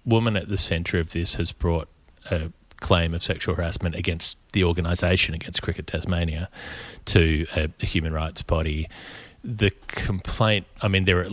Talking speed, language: 165 wpm, English